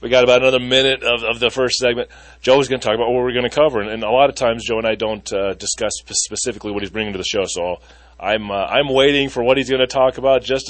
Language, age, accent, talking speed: English, 30-49, American, 310 wpm